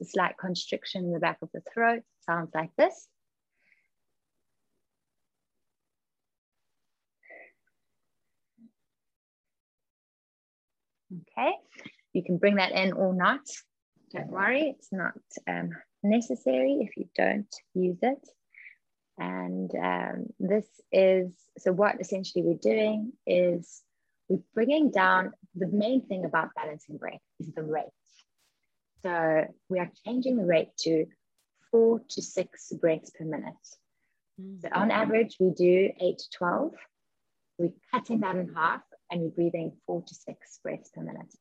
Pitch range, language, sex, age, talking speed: 160-215 Hz, English, female, 20-39, 125 wpm